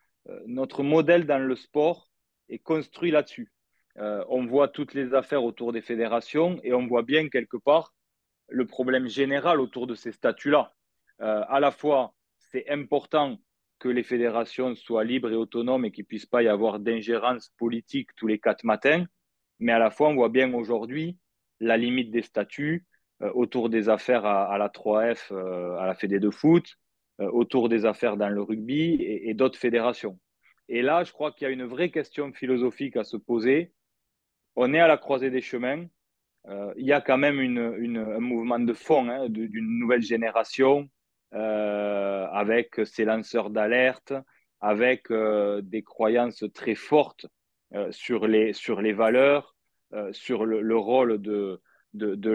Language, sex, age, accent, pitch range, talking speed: French, male, 30-49, French, 110-135 Hz, 175 wpm